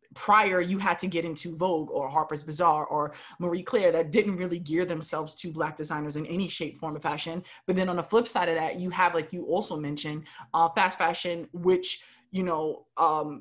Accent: American